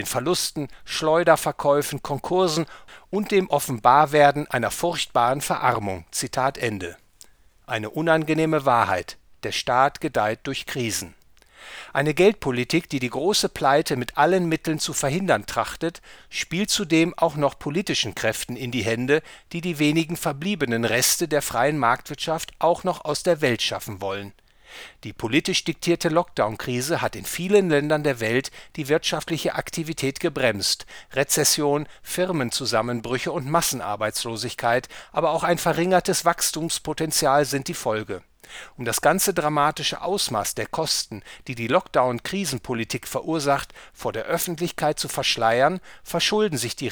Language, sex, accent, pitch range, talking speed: English, male, German, 125-170 Hz, 130 wpm